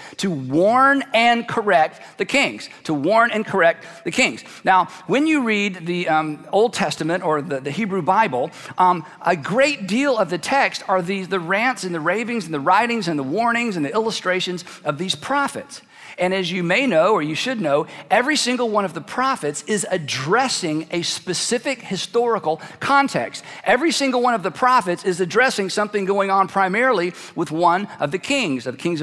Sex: male